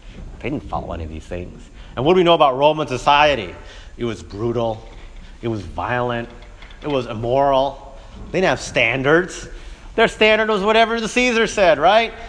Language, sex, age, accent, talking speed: English, male, 40-59, American, 175 wpm